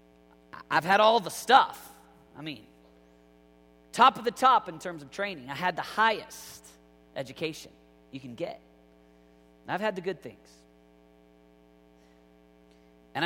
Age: 40-59